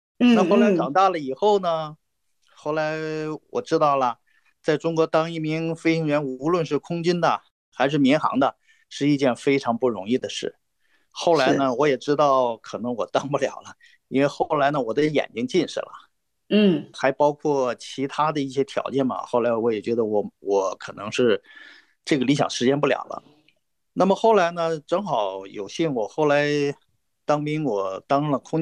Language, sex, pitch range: Chinese, male, 130-180 Hz